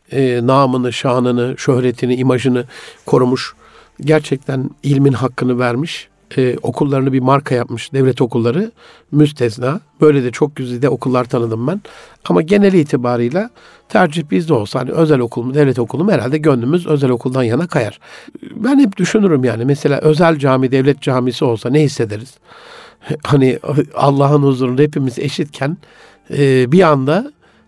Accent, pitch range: native, 125-155 Hz